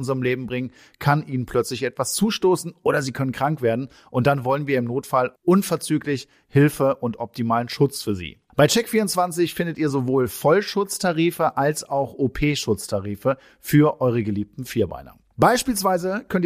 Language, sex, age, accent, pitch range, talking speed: German, male, 40-59, German, 125-170 Hz, 150 wpm